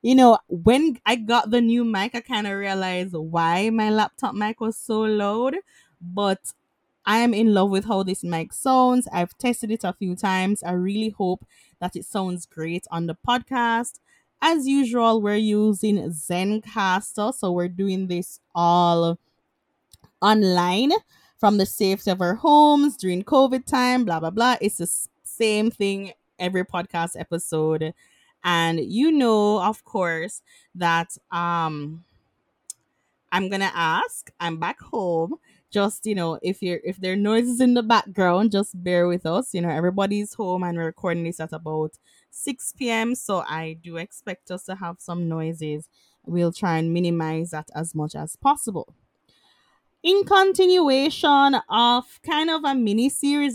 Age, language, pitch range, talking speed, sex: 20-39, English, 175-240 Hz, 160 wpm, female